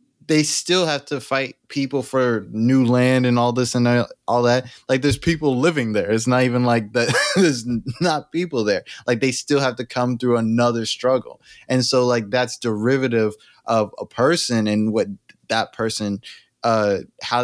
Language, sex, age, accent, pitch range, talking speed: English, male, 20-39, American, 105-125 Hz, 180 wpm